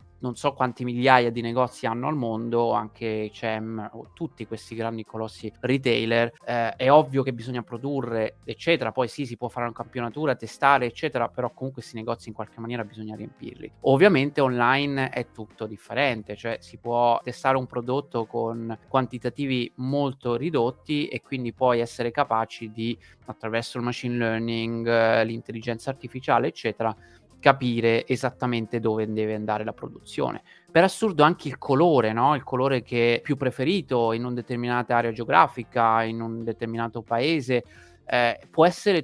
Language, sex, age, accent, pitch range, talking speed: Italian, male, 30-49, native, 115-130 Hz, 155 wpm